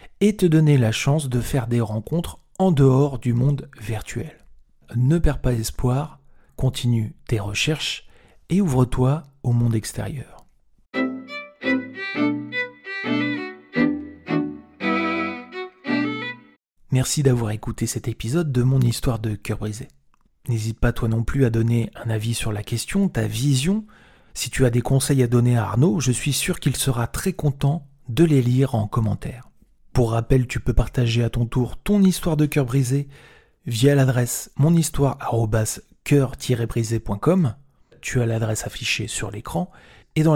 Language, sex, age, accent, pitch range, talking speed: French, male, 40-59, French, 115-150 Hz, 145 wpm